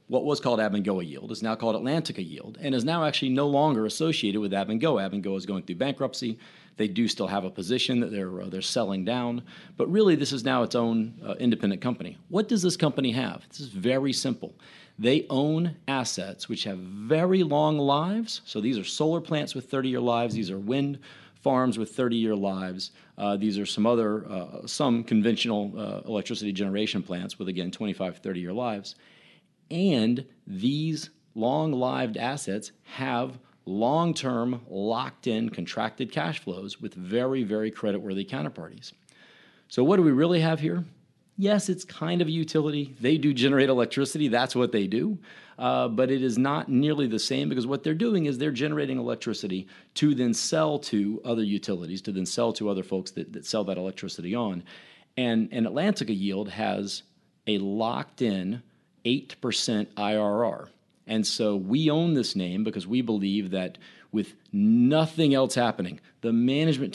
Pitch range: 105-150 Hz